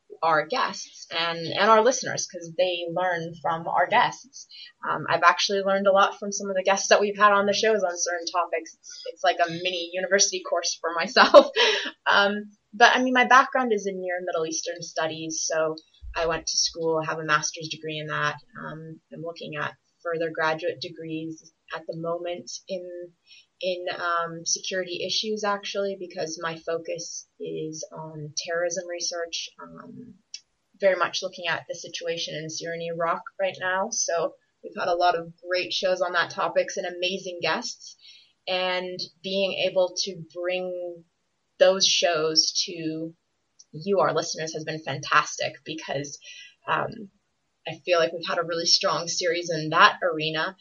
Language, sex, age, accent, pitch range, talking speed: English, female, 20-39, American, 165-195 Hz, 170 wpm